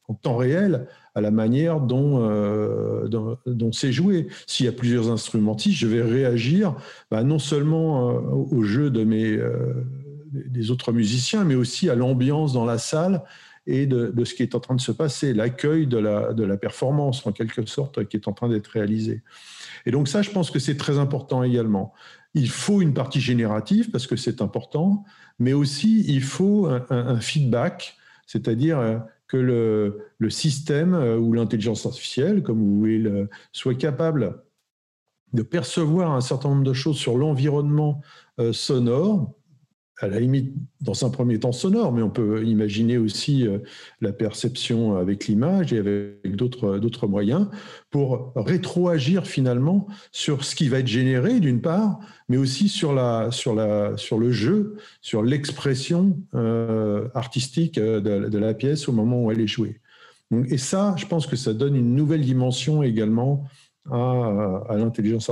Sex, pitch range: male, 115-150 Hz